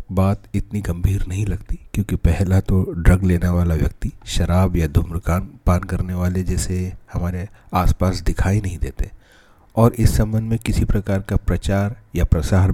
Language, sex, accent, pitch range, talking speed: Hindi, male, native, 85-100 Hz, 160 wpm